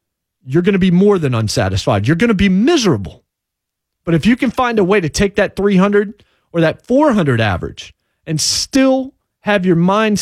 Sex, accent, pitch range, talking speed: male, American, 115-165 Hz, 190 wpm